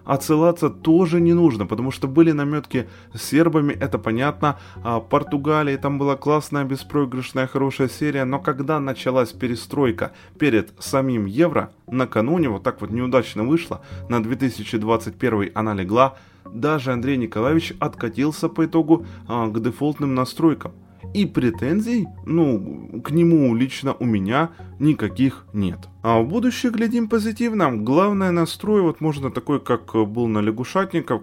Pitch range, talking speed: 110-150 Hz, 135 wpm